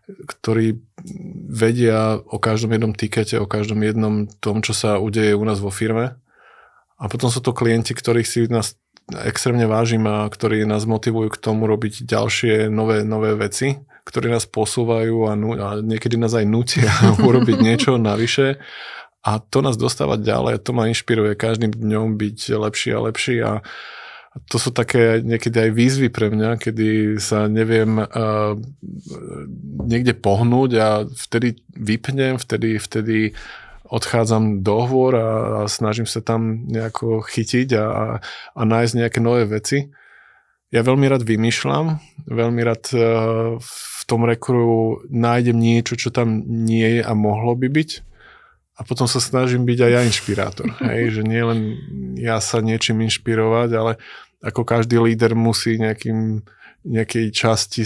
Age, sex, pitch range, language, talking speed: 20-39, male, 110-120 Hz, Slovak, 150 wpm